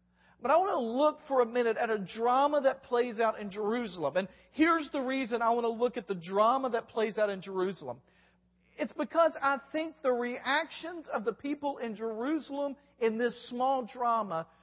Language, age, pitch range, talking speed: English, 40-59, 195-265 Hz, 195 wpm